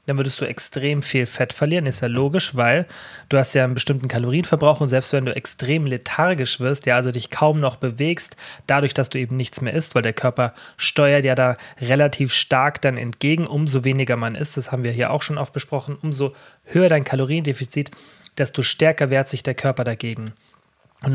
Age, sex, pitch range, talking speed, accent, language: 30-49, male, 130-150 Hz, 200 wpm, German, German